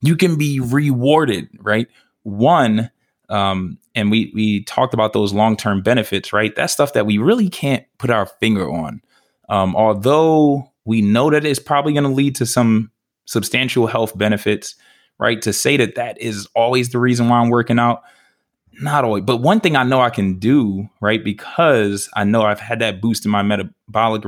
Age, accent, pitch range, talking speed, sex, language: 20-39, American, 105-130 Hz, 185 wpm, male, English